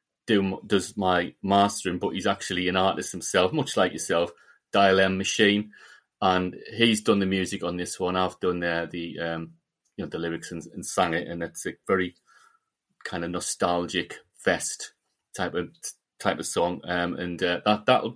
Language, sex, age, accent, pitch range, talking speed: English, male, 30-49, British, 90-105 Hz, 180 wpm